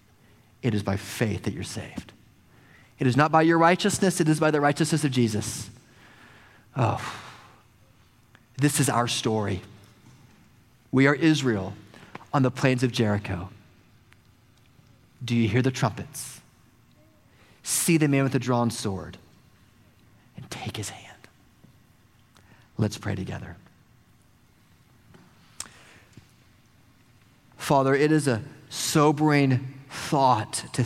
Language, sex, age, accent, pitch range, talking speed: English, male, 40-59, American, 110-130 Hz, 115 wpm